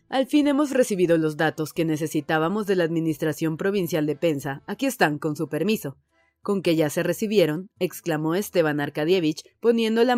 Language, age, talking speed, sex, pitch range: Spanish, 30-49, 170 wpm, female, 155-190 Hz